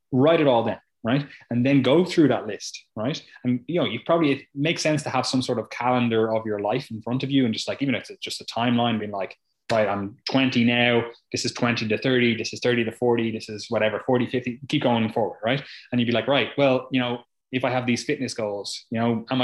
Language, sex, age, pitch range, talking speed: English, male, 20-39, 110-130 Hz, 260 wpm